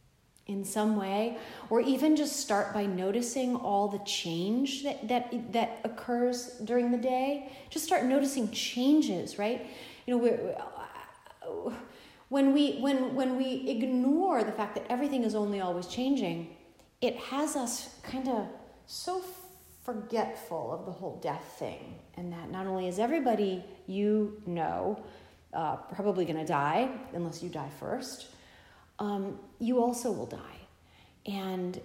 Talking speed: 140 wpm